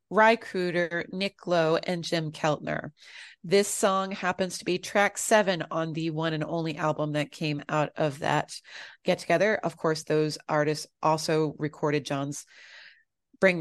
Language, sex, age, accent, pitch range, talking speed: English, female, 30-49, American, 160-195 Hz, 155 wpm